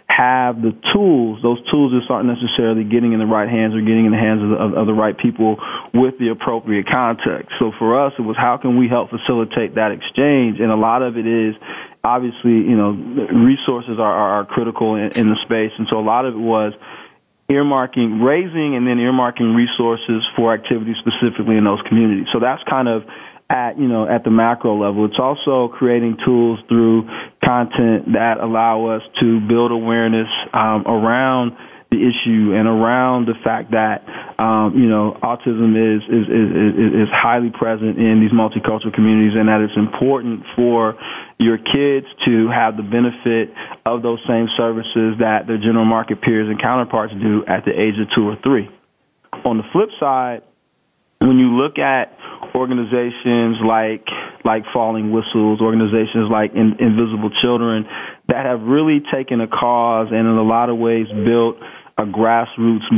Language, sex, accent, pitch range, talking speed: English, male, American, 110-120 Hz, 175 wpm